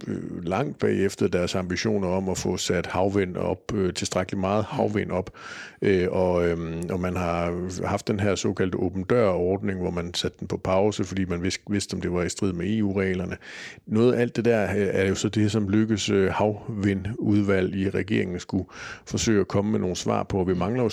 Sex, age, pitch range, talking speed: male, 50-69, 90-105 Hz, 185 wpm